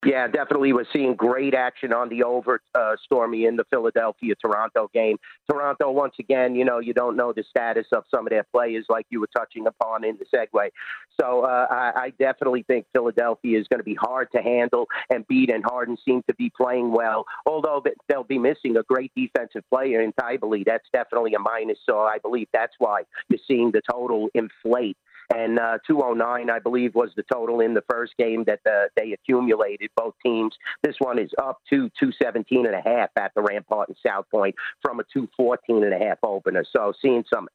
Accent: American